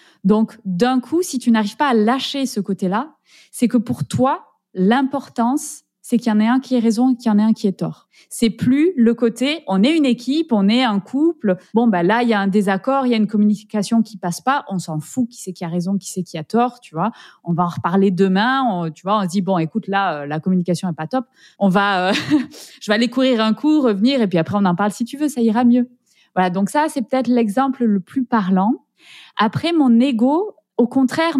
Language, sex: French, female